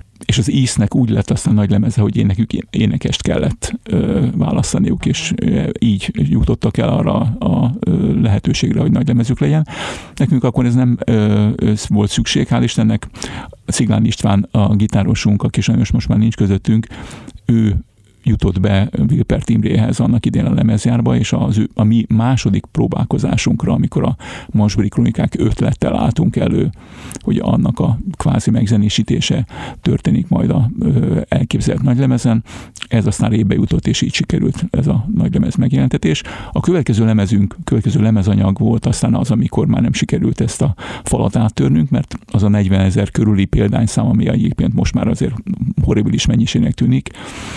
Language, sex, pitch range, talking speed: Hungarian, male, 105-125 Hz, 155 wpm